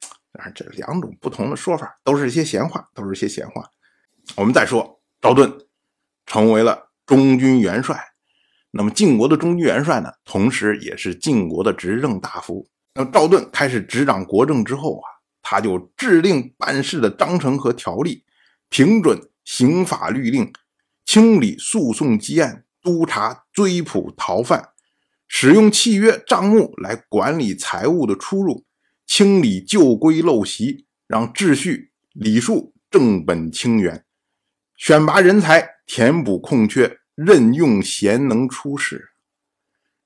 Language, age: Chinese, 50-69